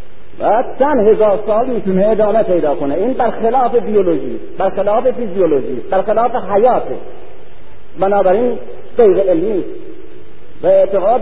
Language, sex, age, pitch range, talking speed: Persian, male, 50-69, 195-290 Hz, 105 wpm